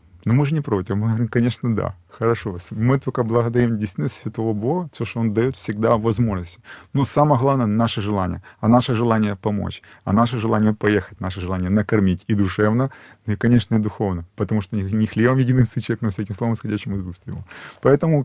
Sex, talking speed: male, 195 wpm